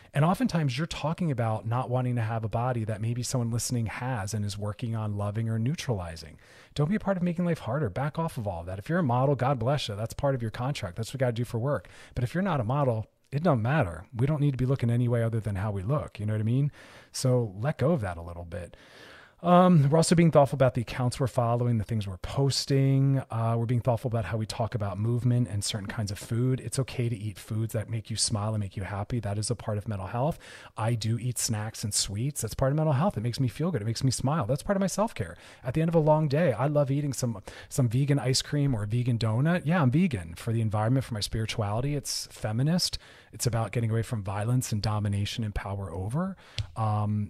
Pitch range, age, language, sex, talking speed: 110-140 Hz, 30-49, English, male, 265 wpm